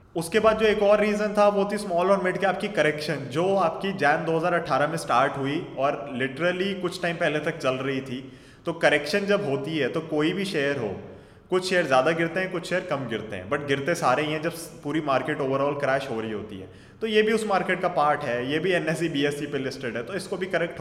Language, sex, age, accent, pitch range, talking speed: Hindi, male, 20-39, native, 135-180 Hz, 240 wpm